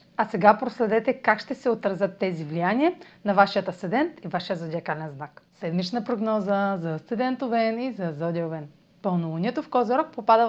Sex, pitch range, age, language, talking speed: female, 185-245 Hz, 30-49, Bulgarian, 155 wpm